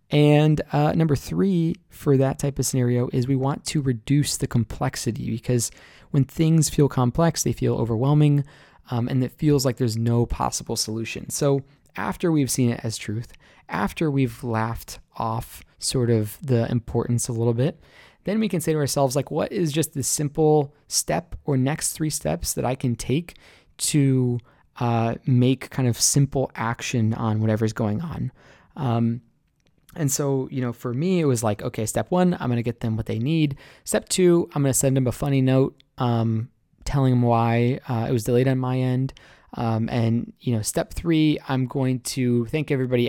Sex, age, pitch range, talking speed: male, 20-39, 115-145 Hz, 190 wpm